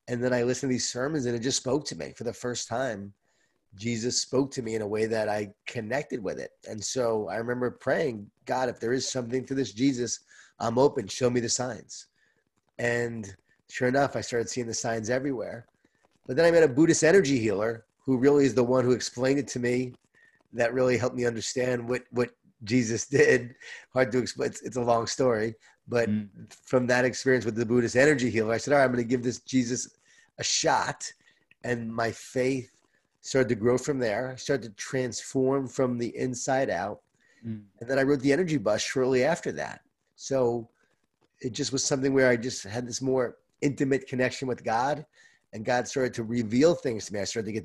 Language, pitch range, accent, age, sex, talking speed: English, 115-130 Hz, American, 30-49, male, 210 wpm